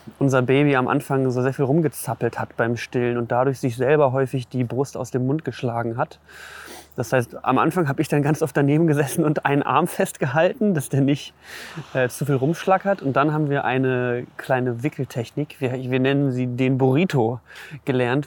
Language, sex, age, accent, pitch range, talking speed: German, male, 20-39, German, 125-155 Hz, 195 wpm